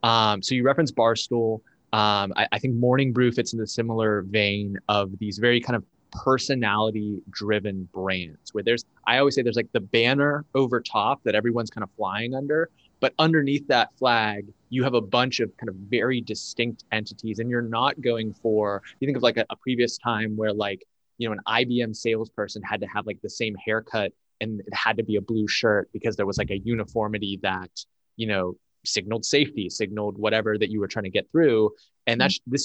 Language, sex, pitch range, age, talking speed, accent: English, male, 105-120 Hz, 20-39, 210 wpm, American